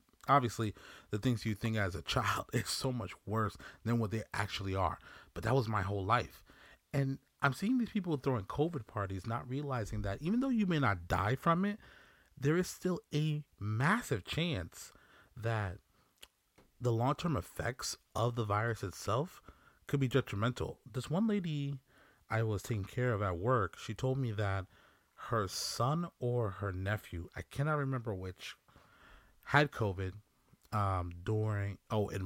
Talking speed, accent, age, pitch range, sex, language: 165 wpm, American, 30-49, 100-135 Hz, male, English